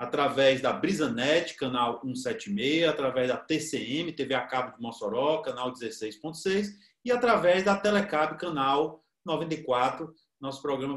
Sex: male